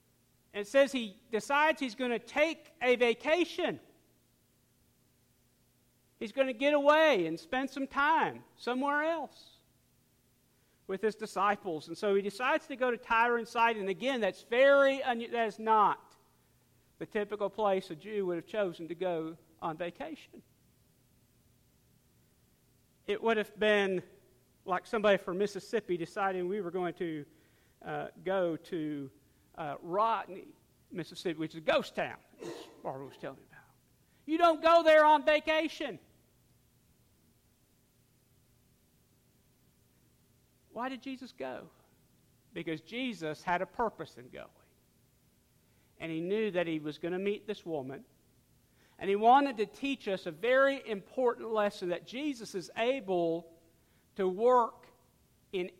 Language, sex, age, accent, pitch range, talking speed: English, male, 50-69, American, 175-260 Hz, 140 wpm